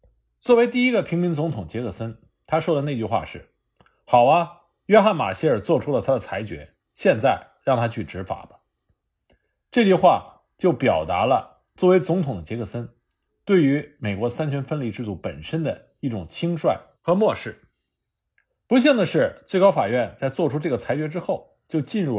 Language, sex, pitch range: Chinese, male, 115-185 Hz